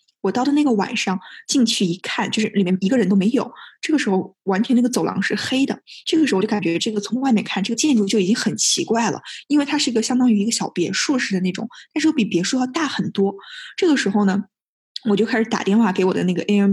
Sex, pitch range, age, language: female, 195-255 Hz, 10-29, Chinese